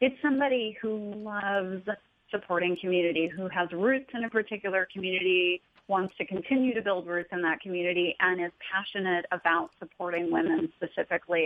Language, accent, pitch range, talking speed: English, American, 175-225 Hz, 150 wpm